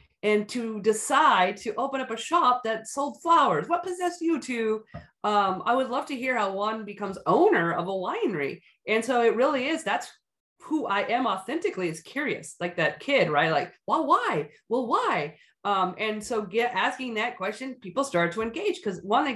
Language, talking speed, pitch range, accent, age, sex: English, 195 wpm, 180-245 Hz, American, 30-49, female